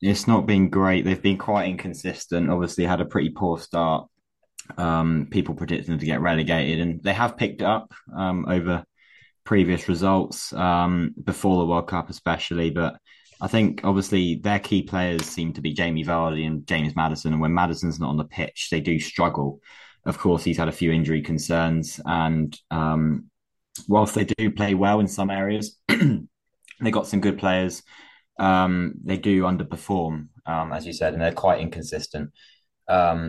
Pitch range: 80-95 Hz